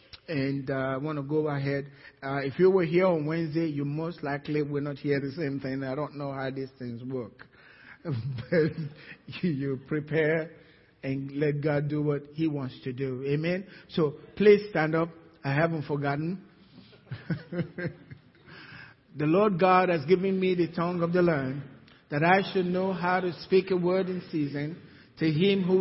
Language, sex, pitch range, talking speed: English, male, 145-185 Hz, 175 wpm